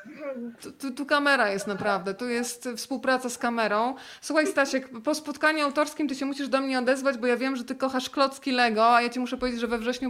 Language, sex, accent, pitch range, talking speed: Polish, female, native, 210-255 Hz, 225 wpm